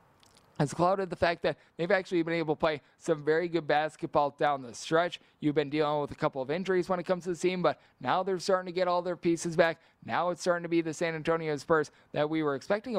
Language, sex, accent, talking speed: English, male, American, 255 wpm